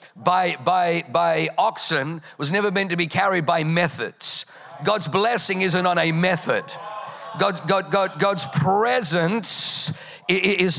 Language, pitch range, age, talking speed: English, 165-195 Hz, 50-69, 135 wpm